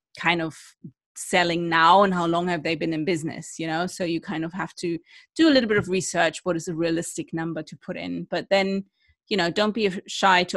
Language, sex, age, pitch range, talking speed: English, female, 30-49, 175-230 Hz, 240 wpm